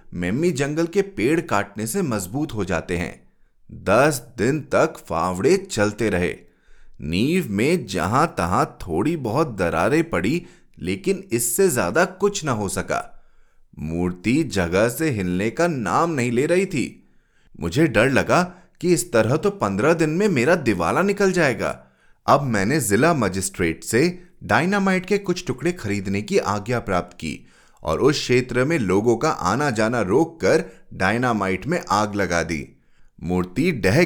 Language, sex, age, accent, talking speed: Hindi, male, 30-49, native, 150 wpm